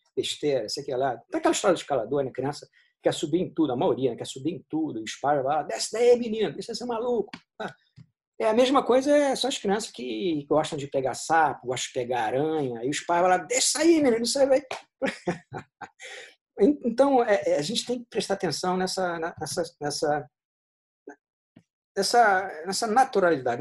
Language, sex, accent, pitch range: Portuguese, male, Brazilian, 150-240 Hz